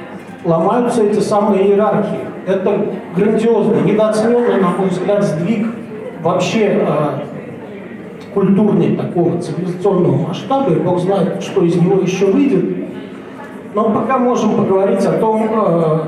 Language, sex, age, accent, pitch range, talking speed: Russian, male, 40-59, native, 175-210 Hz, 120 wpm